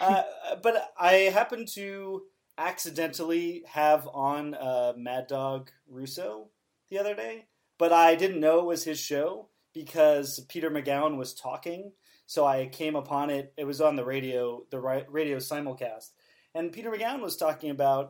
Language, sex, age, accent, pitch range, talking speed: English, male, 30-49, American, 135-170 Hz, 155 wpm